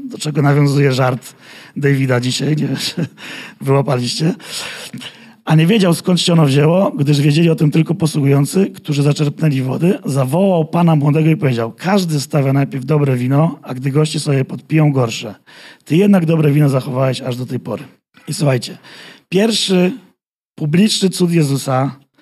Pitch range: 145-180 Hz